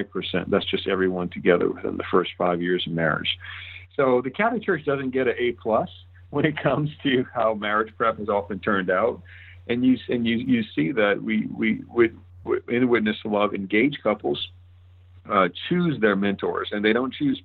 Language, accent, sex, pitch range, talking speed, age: English, American, male, 95-115 Hz, 190 wpm, 50-69